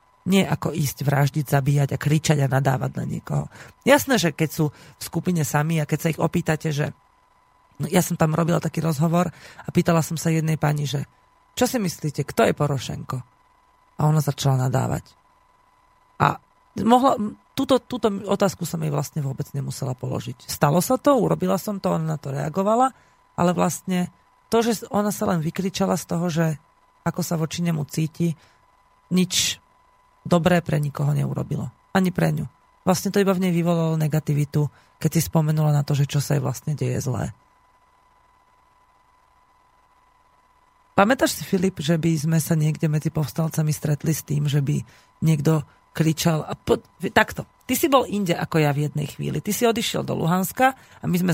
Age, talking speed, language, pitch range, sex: 40-59, 175 wpm, Slovak, 150-200 Hz, female